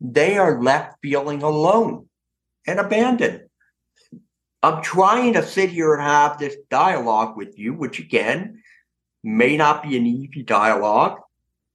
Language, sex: English, male